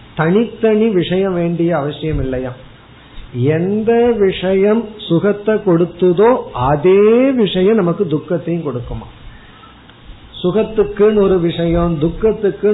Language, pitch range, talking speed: Tamil, 145-190 Hz, 85 wpm